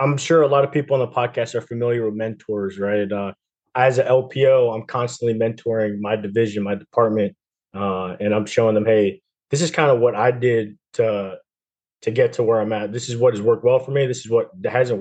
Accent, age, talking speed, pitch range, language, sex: American, 20-39, 230 wpm, 105-130 Hz, English, male